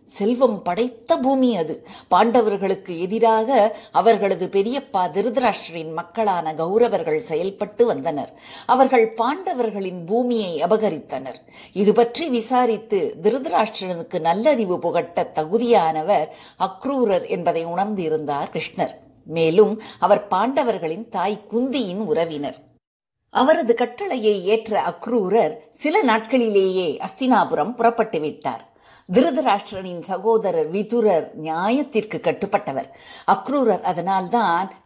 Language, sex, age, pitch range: Tamil, female, 50-69, 185-235 Hz